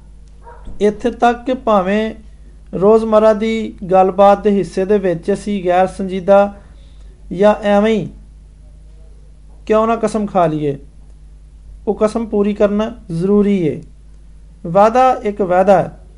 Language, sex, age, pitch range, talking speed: Hindi, male, 50-69, 180-225 Hz, 90 wpm